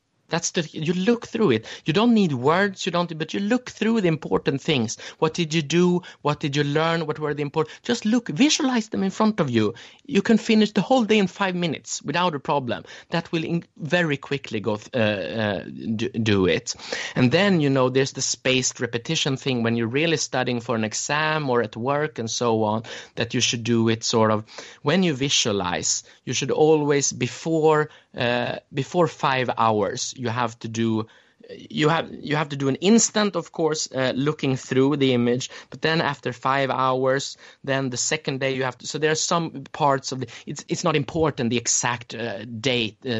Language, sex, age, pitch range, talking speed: English, male, 30-49, 120-165 Hz, 205 wpm